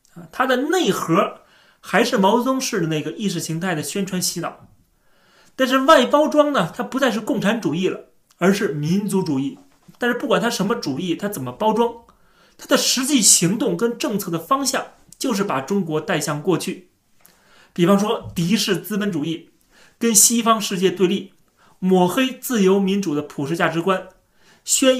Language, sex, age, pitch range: Chinese, male, 30-49, 160-225 Hz